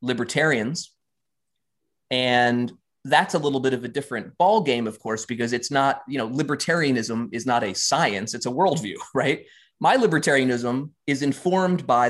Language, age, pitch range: English, 20-39, 120-155 Hz